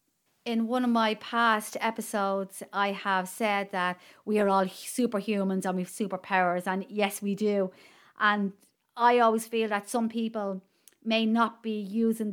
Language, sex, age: English, female, 30-49